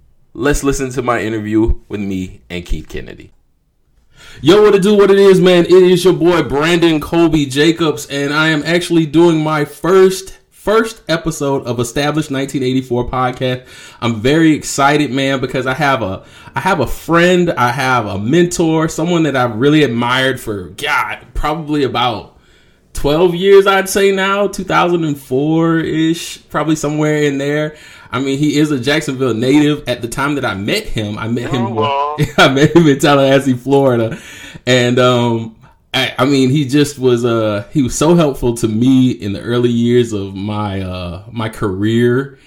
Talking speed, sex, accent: 170 wpm, male, American